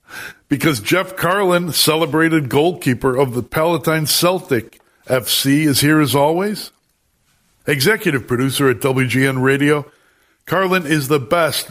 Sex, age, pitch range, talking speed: male, 60-79, 125-160 Hz, 120 wpm